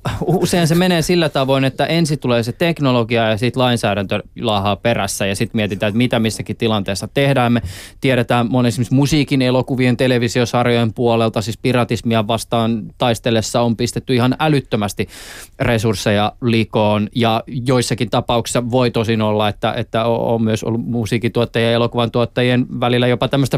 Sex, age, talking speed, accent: male, 20-39, 150 wpm, native